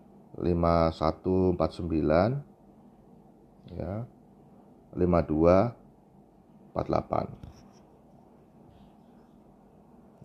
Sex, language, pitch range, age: male, Indonesian, 85-115 Hz, 40-59